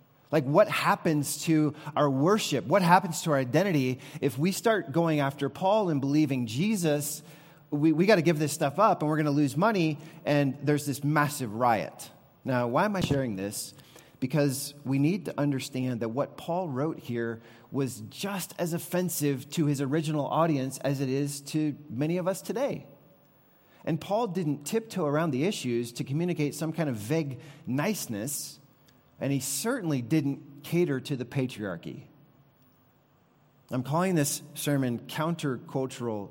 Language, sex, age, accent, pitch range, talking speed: English, male, 30-49, American, 125-155 Hz, 160 wpm